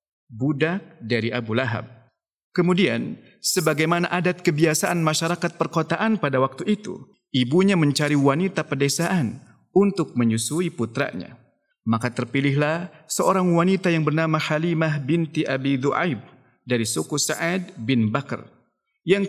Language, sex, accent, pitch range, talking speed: Indonesian, male, Malaysian, 130-180 Hz, 110 wpm